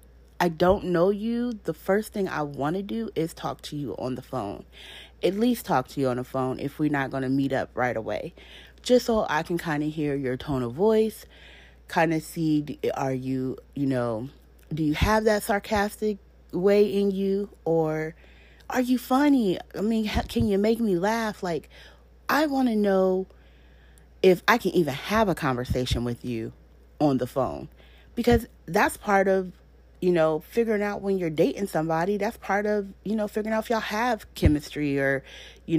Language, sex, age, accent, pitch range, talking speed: English, female, 30-49, American, 130-205 Hz, 190 wpm